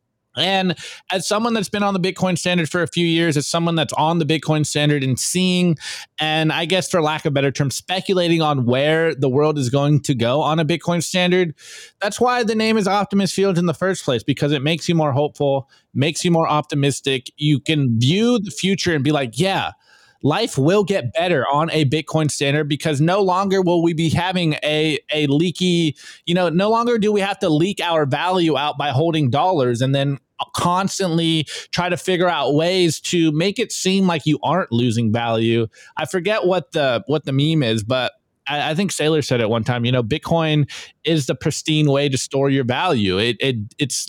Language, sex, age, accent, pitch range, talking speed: English, male, 20-39, American, 145-180 Hz, 210 wpm